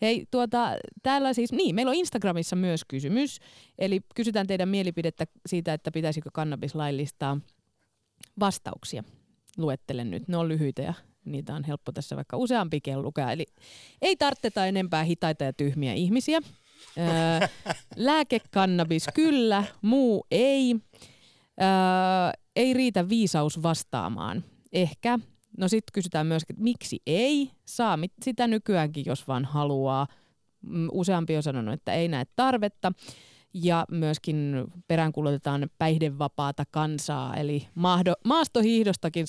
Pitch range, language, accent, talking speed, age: 155-225 Hz, Finnish, native, 110 wpm, 20-39